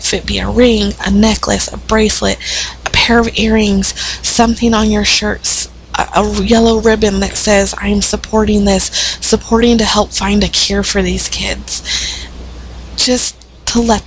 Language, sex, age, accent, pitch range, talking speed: English, female, 20-39, American, 185-210 Hz, 160 wpm